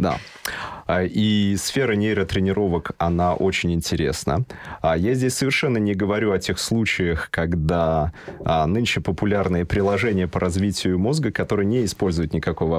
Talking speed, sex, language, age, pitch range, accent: 120 wpm, male, Russian, 30-49, 85-105 Hz, native